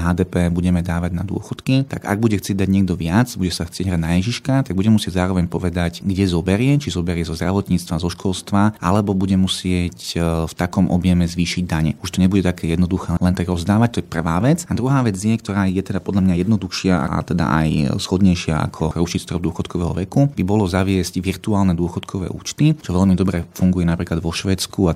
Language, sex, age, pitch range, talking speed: Slovak, male, 30-49, 90-100 Hz, 200 wpm